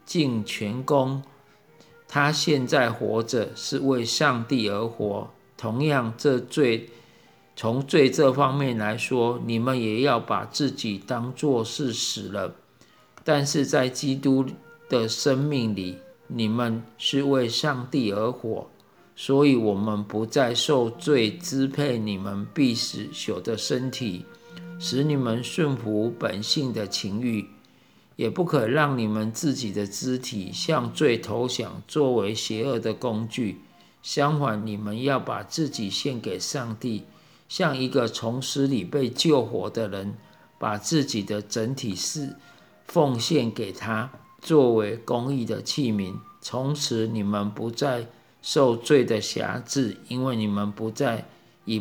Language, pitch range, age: Chinese, 110-140 Hz, 50-69